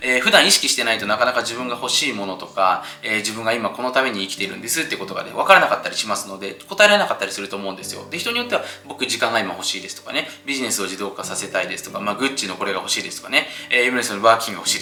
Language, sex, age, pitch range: Japanese, male, 20-39, 100-155 Hz